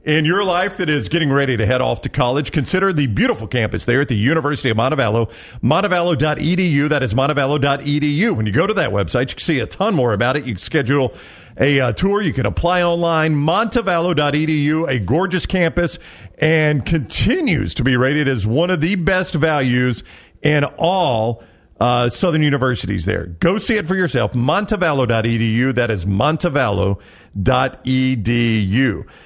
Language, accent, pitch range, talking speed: English, American, 110-150 Hz, 165 wpm